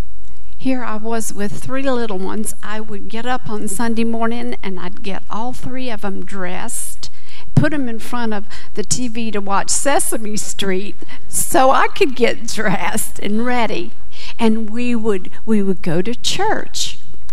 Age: 50-69